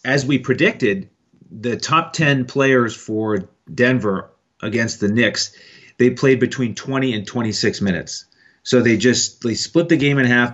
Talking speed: 160 wpm